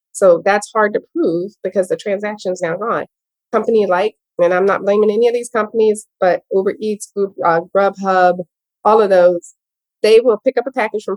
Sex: female